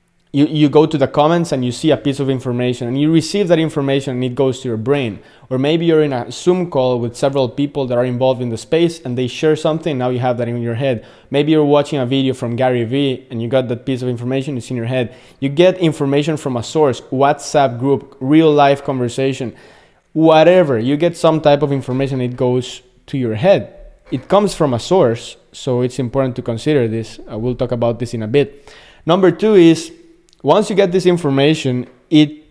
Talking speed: 225 wpm